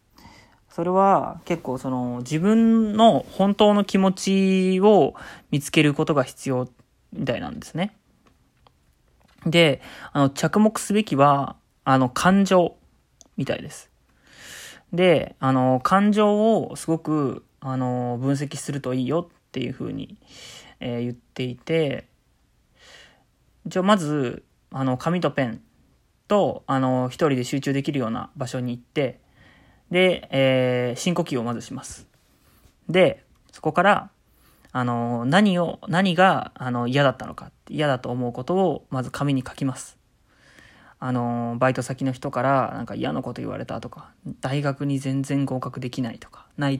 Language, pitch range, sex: Japanese, 130-180 Hz, male